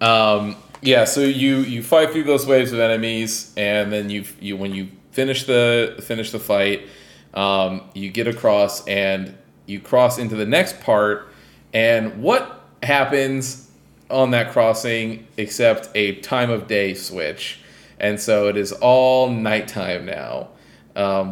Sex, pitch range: male, 100-120 Hz